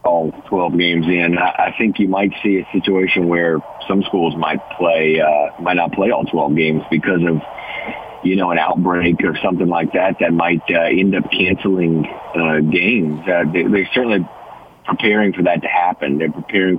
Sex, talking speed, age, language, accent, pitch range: male, 180 wpm, 30-49, English, American, 80-95 Hz